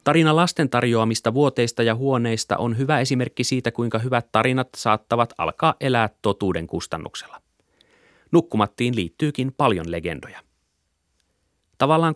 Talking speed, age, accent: 115 wpm, 30-49, native